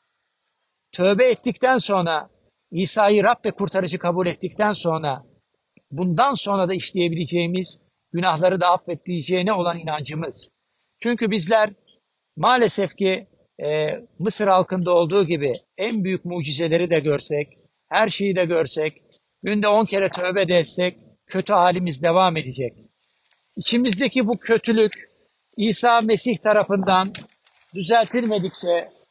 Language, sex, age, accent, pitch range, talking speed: Turkish, male, 60-79, native, 180-220 Hz, 105 wpm